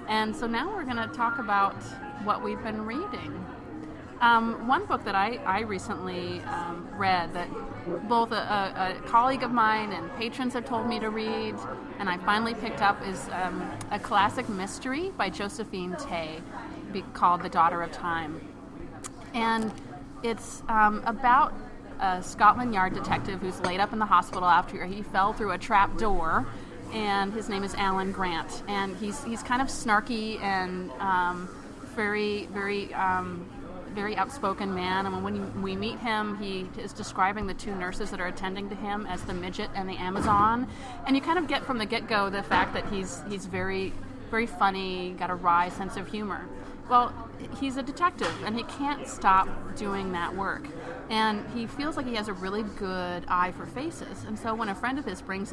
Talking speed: 185 wpm